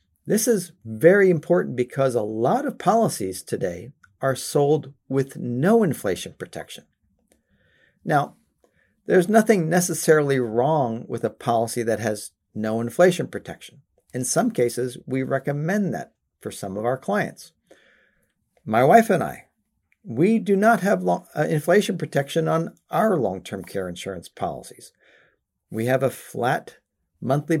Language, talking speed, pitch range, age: English, 135 wpm, 120-165 Hz, 50-69